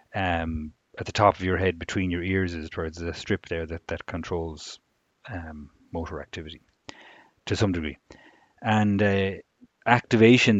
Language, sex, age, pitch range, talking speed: English, male, 30-49, 85-105 Hz, 155 wpm